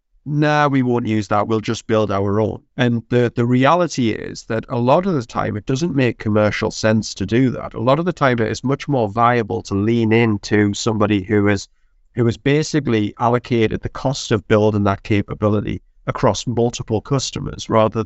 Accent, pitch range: British, 105-135 Hz